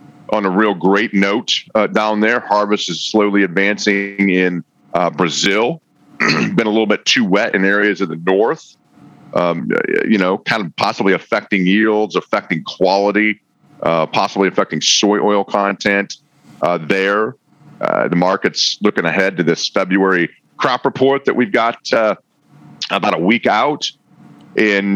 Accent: American